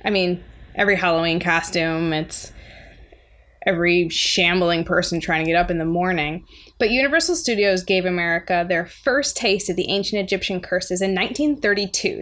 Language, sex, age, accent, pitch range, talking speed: English, female, 20-39, American, 180-230 Hz, 150 wpm